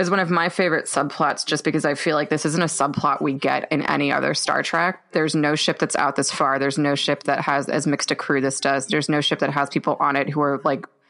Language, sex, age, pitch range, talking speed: English, female, 20-39, 150-175 Hz, 275 wpm